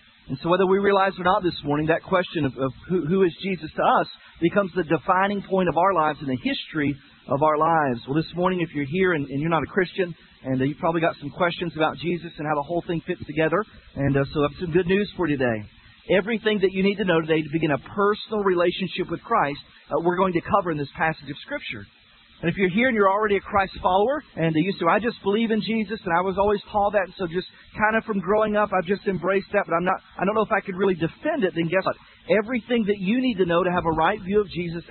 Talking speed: 275 wpm